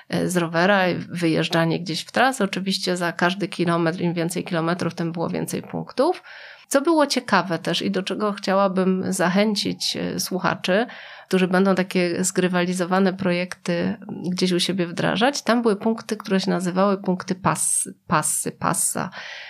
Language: Polish